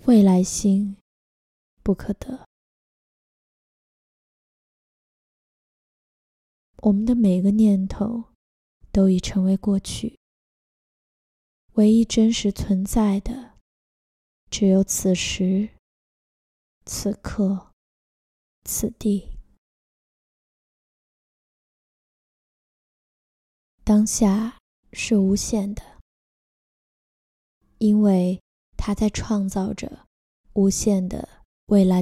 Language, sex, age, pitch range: Chinese, female, 20-39, 195-215 Hz